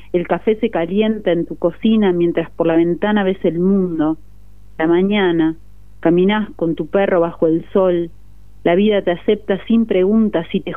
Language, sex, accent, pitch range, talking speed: Spanish, female, Argentinian, 155-195 Hz, 175 wpm